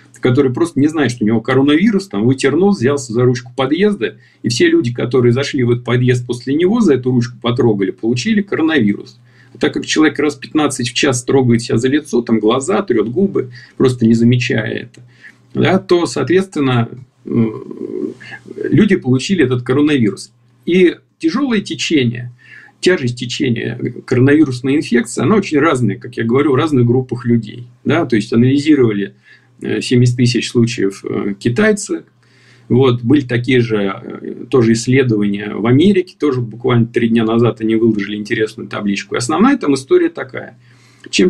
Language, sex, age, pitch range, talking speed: Russian, male, 50-69, 115-140 Hz, 150 wpm